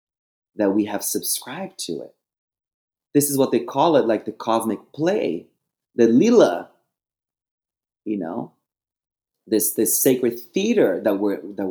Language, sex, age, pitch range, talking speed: English, male, 30-49, 120-165 Hz, 140 wpm